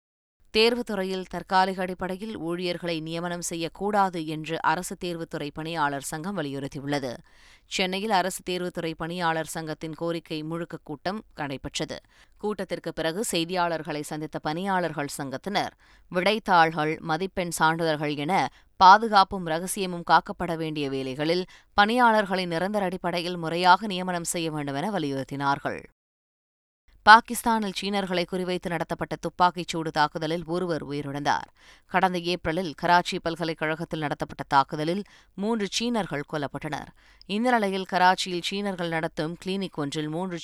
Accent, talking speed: native, 100 wpm